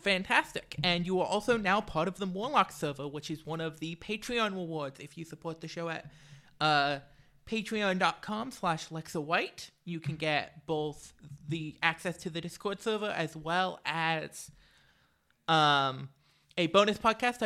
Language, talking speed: English, 160 wpm